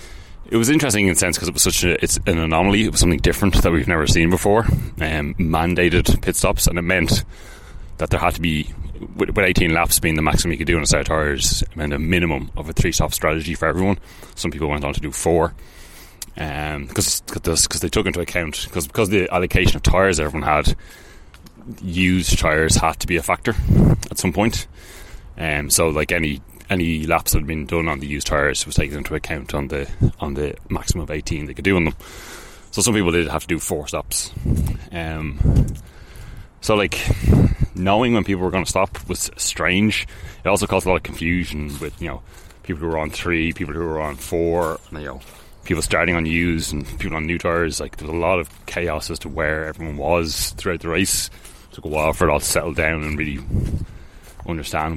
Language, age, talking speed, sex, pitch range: English, 30-49, 225 wpm, male, 80-95 Hz